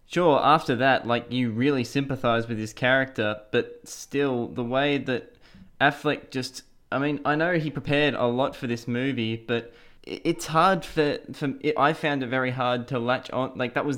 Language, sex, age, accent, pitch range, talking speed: English, male, 10-29, Australian, 115-135 Hz, 190 wpm